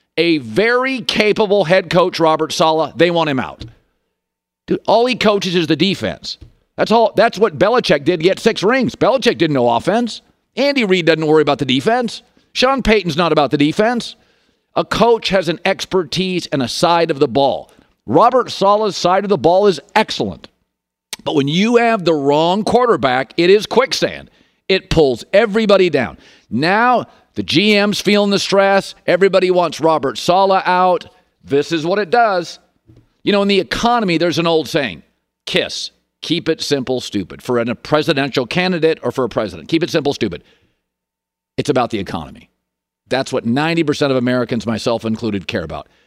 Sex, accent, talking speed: male, American, 175 wpm